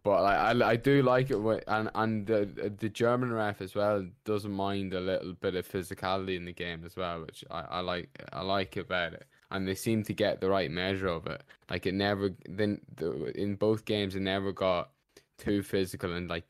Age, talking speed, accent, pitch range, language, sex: 10-29, 220 wpm, British, 85-105 Hz, English, male